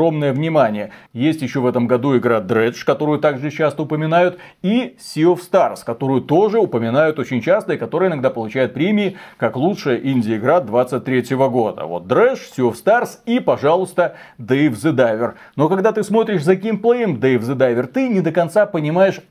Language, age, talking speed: Russian, 30-49, 175 wpm